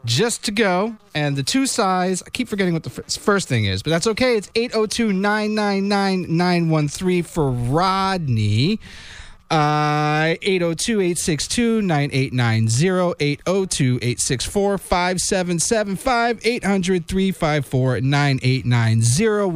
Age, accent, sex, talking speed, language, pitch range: 30-49, American, male, 80 wpm, English, 145-200 Hz